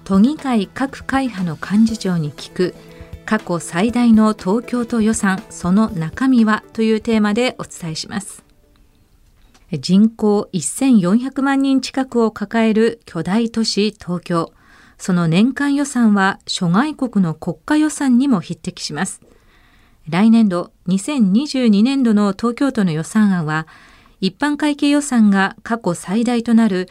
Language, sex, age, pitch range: Japanese, female, 40-59, 180-240 Hz